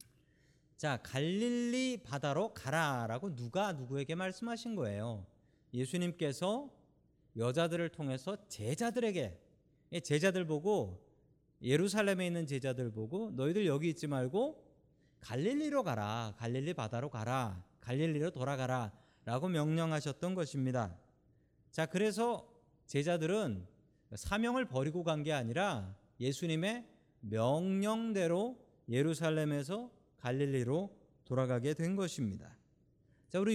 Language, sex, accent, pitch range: Korean, male, native, 130-175 Hz